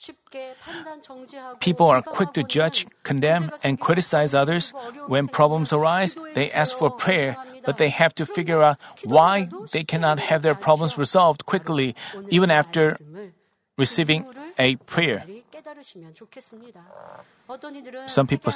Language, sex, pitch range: Korean, male, 135-190 Hz